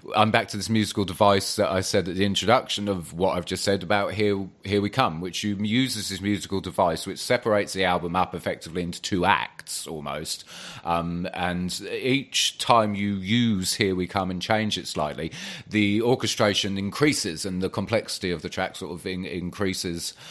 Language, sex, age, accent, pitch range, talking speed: English, male, 30-49, British, 95-125 Hz, 190 wpm